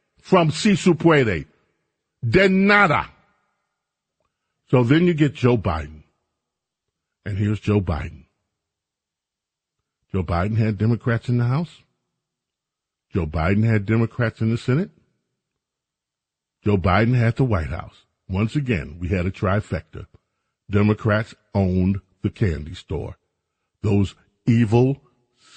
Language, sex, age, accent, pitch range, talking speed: English, male, 40-59, American, 105-175 Hz, 115 wpm